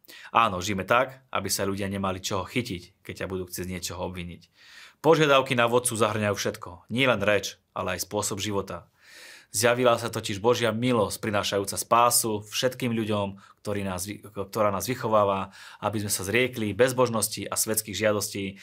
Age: 30-49